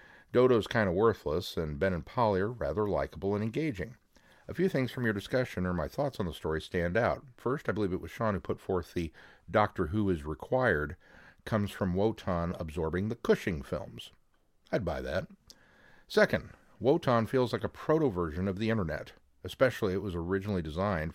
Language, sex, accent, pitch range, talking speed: English, male, American, 85-120 Hz, 185 wpm